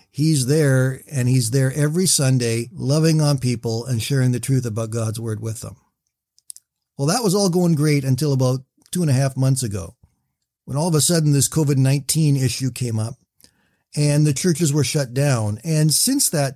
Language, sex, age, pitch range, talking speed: English, male, 50-69, 130-155 Hz, 190 wpm